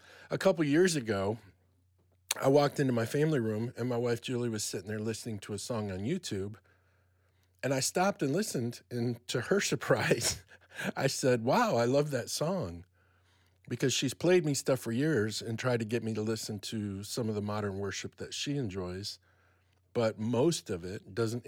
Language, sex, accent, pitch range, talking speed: English, male, American, 100-140 Hz, 185 wpm